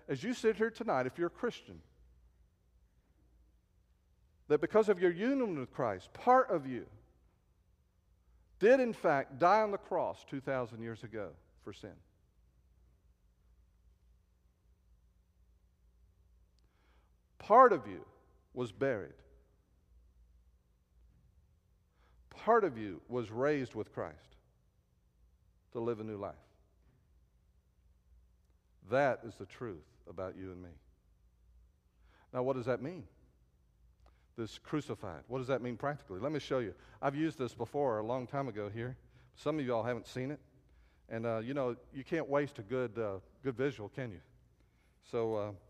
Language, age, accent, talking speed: English, 50-69, American, 135 wpm